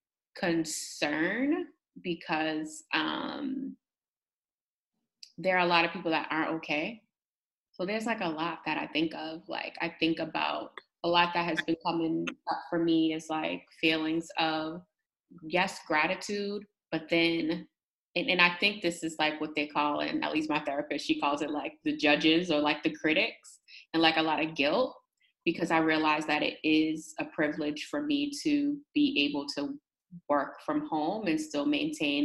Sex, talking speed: female, 175 wpm